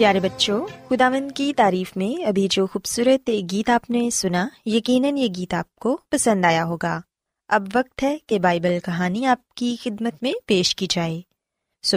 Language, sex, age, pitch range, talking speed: Urdu, female, 20-39, 185-260 Hz, 160 wpm